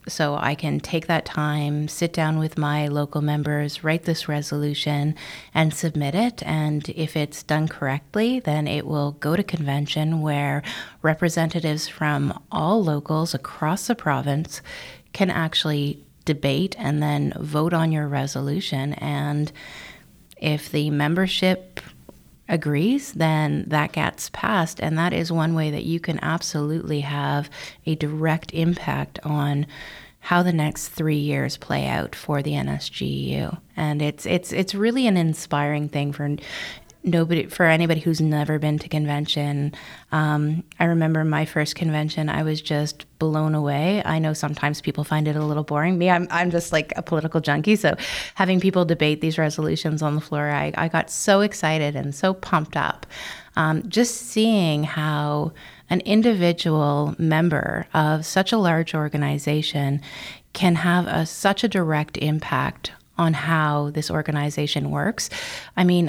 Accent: American